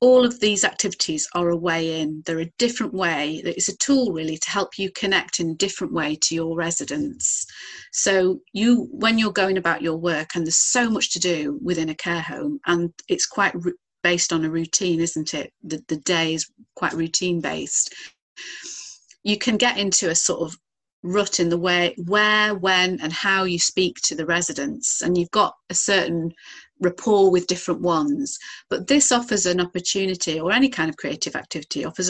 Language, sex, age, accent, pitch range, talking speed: English, female, 40-59, British, 170-195 Hz, 190 wpm